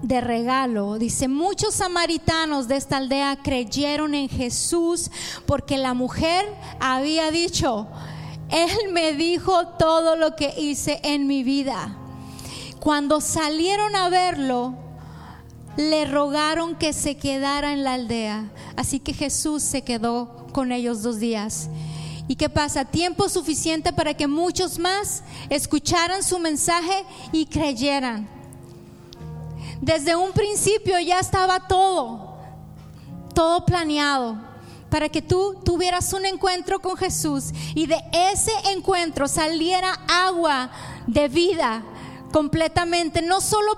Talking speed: 120 wpm